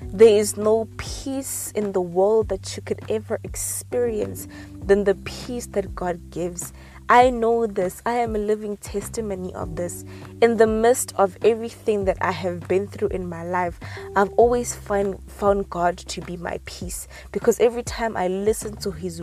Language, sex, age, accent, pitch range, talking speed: English, female, 20-39, South African, 180-230 Hz, 180 wpm